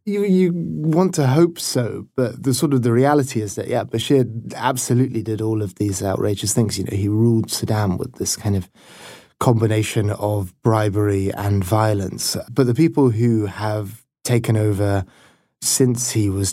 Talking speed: 170 wpm